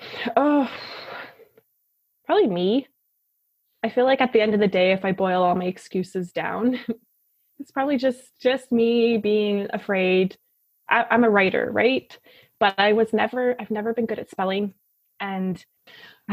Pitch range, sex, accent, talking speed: 190-230 Hz, female, American, 155 wpm